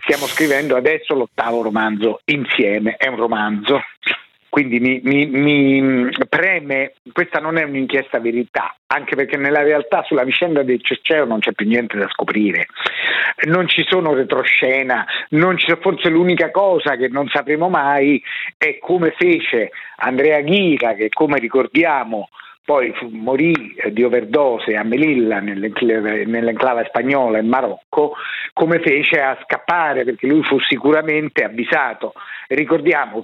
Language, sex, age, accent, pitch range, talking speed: Italian, male, 50-69, native, 125-165 Hz, 135 wpm